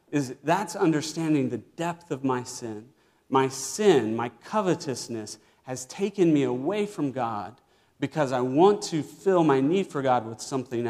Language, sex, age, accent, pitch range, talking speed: English, male, 40-59, American, 110-140 Hz, 160 wpm